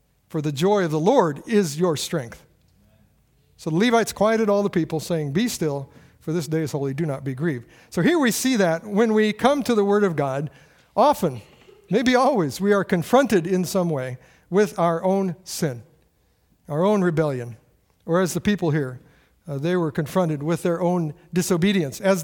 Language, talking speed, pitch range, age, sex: English, 190 wpm, 145-205 Hz, 60-79, male